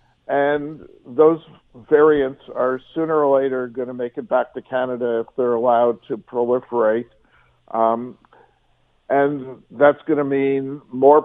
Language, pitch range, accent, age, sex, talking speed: English, 125-140 Hz, American, 50-69, male, 140 wpm